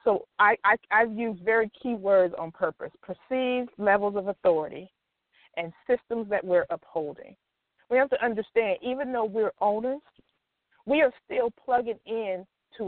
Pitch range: 180-240 Hz